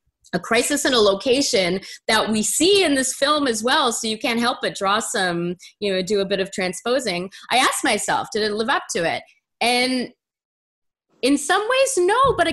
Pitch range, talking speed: 190-265 Hz, 200 wpm